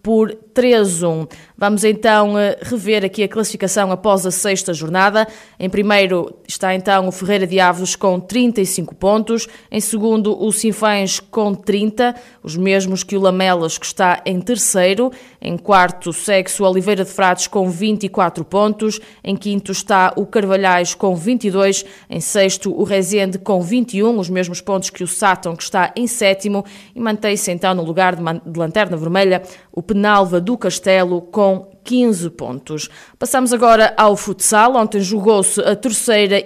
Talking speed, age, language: 160 wpm, 20-39, Portuguese